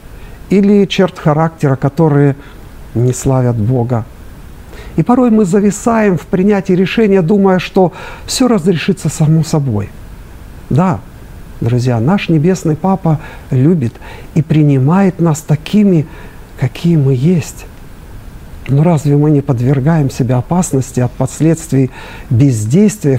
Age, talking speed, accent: 50-69, 110 wpm, native